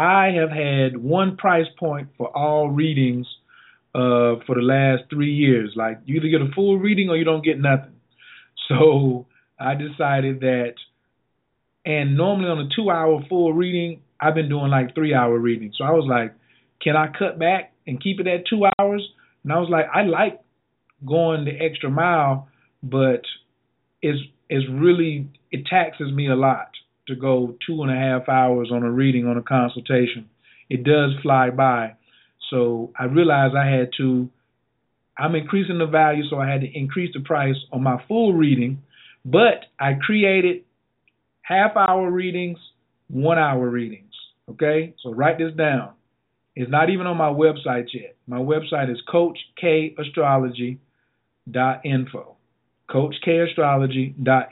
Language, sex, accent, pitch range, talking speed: English, male, American, 125-160 Hz, 155 wpm